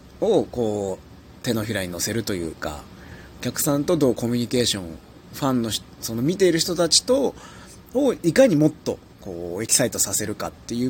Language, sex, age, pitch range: Japanese, male, 30-49, 100-160 Hz